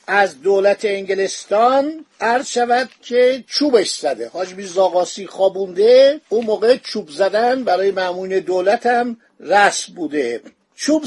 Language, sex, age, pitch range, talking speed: Persian, male, 50-69, 190-245 Hz, 115 wpm